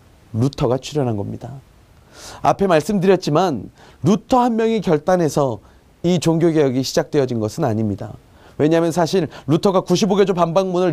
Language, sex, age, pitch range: Korean, male, 30-49, 140-210 Hz